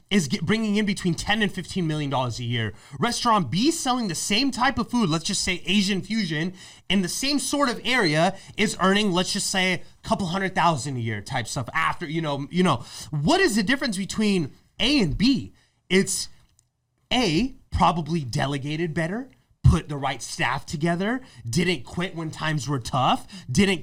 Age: 30-49